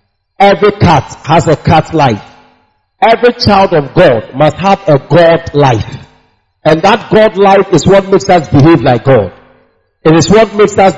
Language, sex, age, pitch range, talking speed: English, male, 50-69, 135-190 Hz, 170 wpm